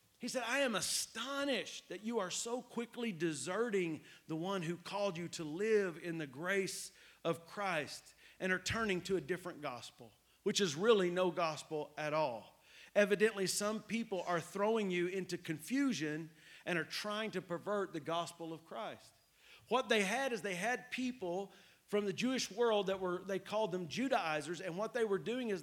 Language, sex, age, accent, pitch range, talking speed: English, male, 40-59, American, 170-215 Hz, 180 wpm